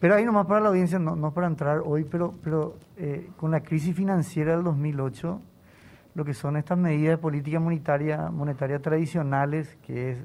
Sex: male